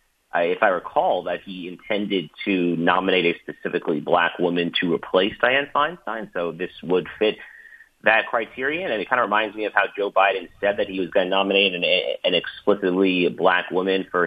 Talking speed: 200 wpm